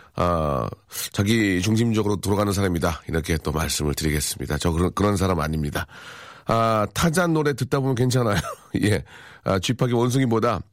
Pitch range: 90-125 Hz